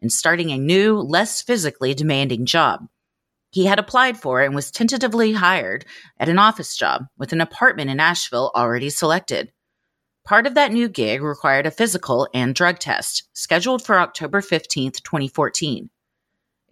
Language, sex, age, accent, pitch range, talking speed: English, female, 30-49, American, 135-215 Hz, 155 wpm